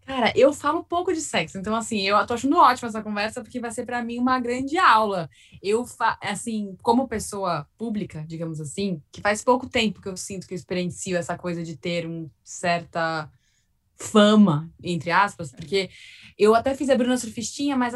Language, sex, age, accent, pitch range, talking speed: Portuguese, female, 10-29, Brazilian, 190-250 Hz, 190 wpm